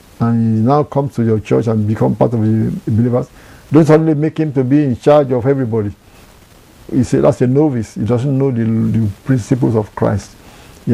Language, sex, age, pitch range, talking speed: English, male, 50-69, 115-150 Hz, 205 wpm